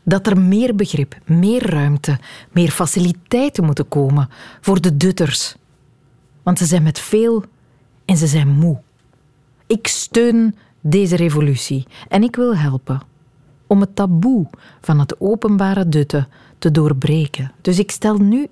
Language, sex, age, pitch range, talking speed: Dutch, female, 40-59, 135-195 Hz, 140 wpm